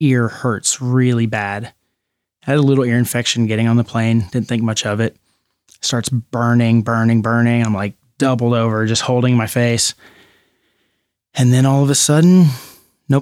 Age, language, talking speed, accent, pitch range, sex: 20-39, English, 175 wpm, American, 115-135 Hz, male